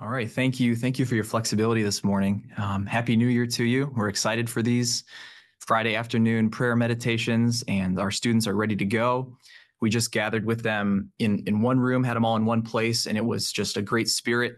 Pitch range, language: 110-130 Hz, English